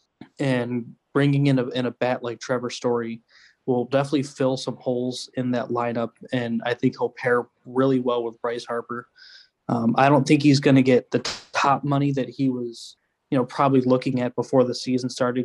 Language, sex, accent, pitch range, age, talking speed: English, male, American, 120-135 Hz, 20-39, 200 wpm